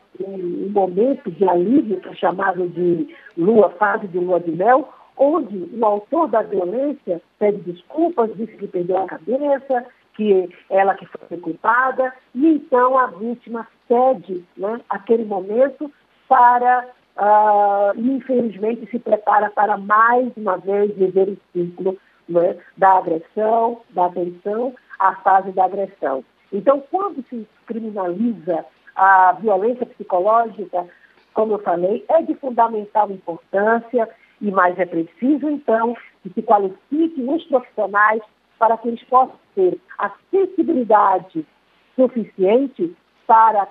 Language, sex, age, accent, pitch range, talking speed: Portuguese, female, 50-69, Brazilian, 190-250 Hz, 130 wpm